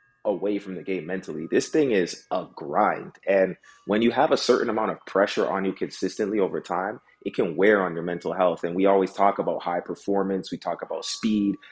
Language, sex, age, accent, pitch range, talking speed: English, male, 30-49, American, 95-110 Hz, 215 wpm